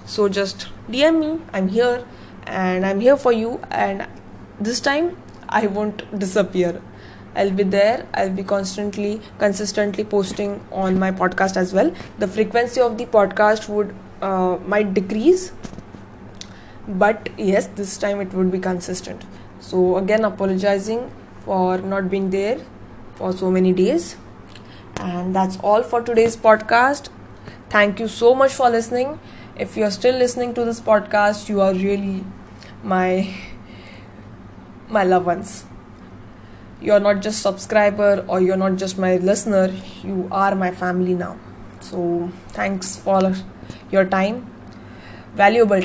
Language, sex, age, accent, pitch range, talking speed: English, female, 20-39, Indian, 185-210 Hz, 140 wpm